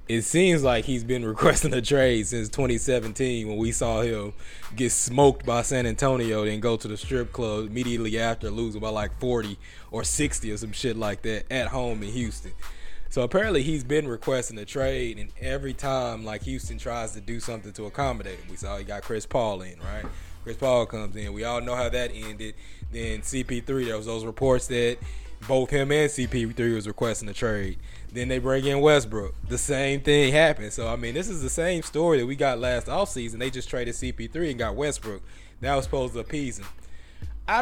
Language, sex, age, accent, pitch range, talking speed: English, male, 20-39, American, 110-140 Hz, 205 wpm